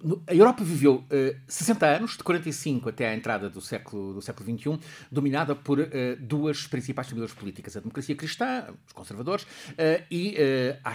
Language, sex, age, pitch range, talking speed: English, male, 50-69, 120-155 Hz, 180 wpm